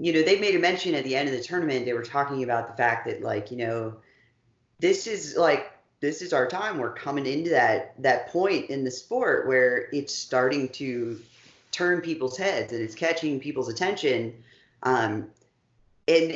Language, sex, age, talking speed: English, female, 30-49, 190 wpm